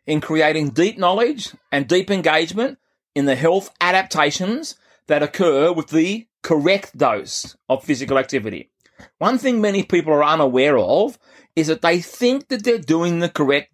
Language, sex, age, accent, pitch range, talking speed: English, male, 30-49, Australian, 145-185 Hz, 155 wpm